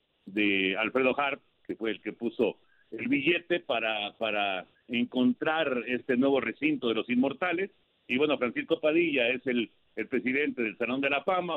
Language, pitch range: Spanish, 120-165 Hz